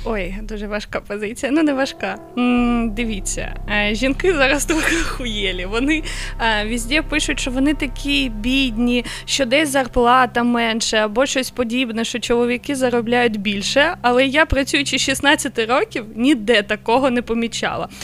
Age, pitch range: 20-39, 235-275 Hz